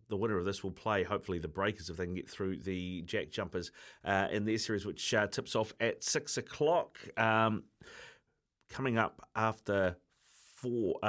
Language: English